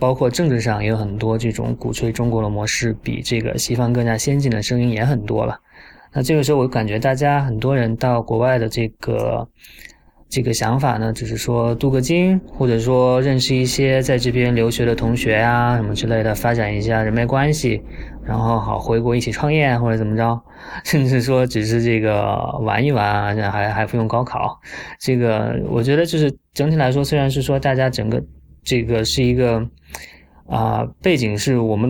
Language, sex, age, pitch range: Chinese, male, 20-39, 110-130 Hz